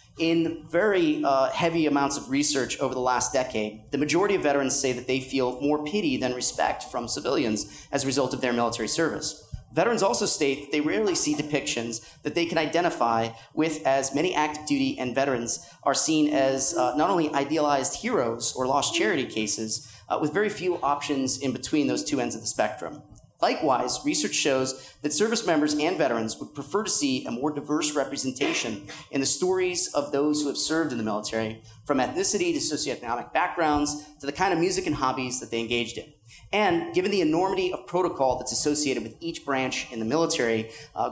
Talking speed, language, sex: 195 wpm, English, male